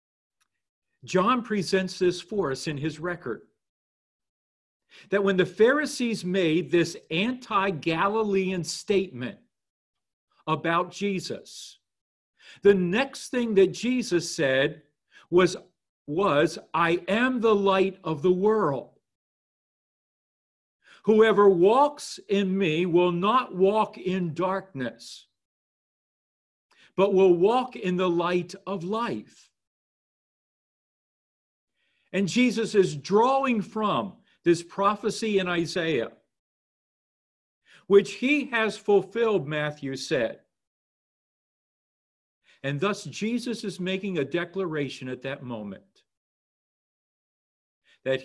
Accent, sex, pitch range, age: American, male, 155-200 Hz, 50-69